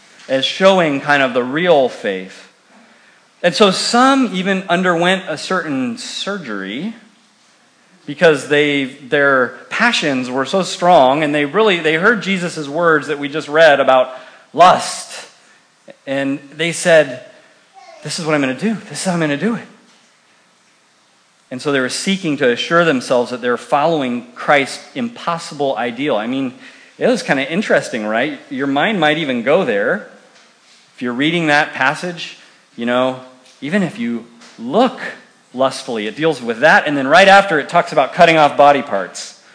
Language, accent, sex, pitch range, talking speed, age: English, American, male, 130-190 Hz, 165 wpm, 40-59